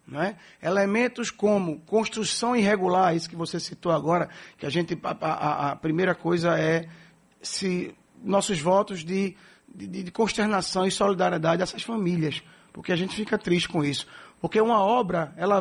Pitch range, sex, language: 165-205 Hz, male, Portuguese